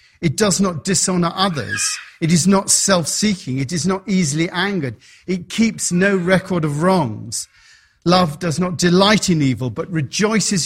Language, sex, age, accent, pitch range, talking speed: English, male, 50-69, British, 140-205 Hz, 160 wpm